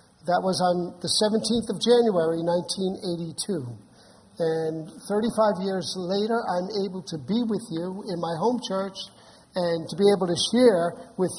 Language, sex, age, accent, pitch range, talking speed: English, male, 50-69, American, 180-225 Hz, 155 wpm